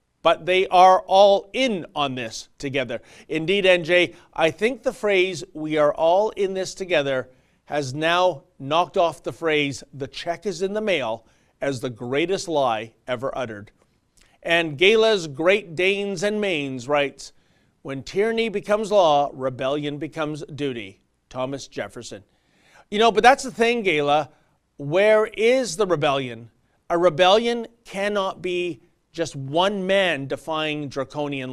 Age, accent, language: 40-59, American, English